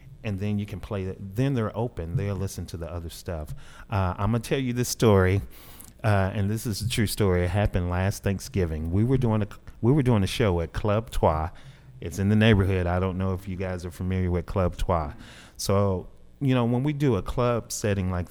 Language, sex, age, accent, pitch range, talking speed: English, male, 30-49, American, 90-110 Hz, 230 wpm